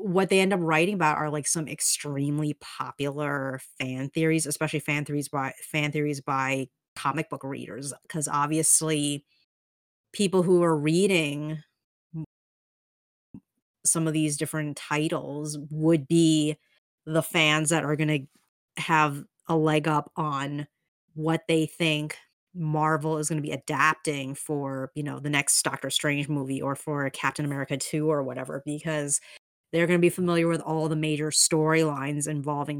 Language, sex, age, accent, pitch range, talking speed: English, female, 30-49, American, 145-160 Hz, 150 wpm